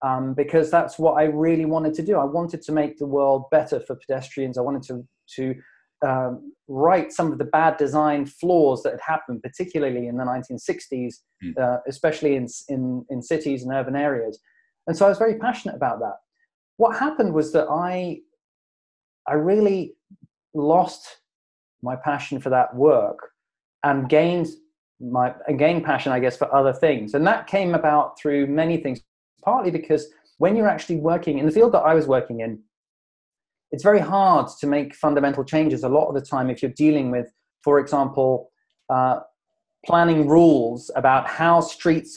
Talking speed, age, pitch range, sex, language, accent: 175 wpm, 30-49, 140-170 Hz, male, English, British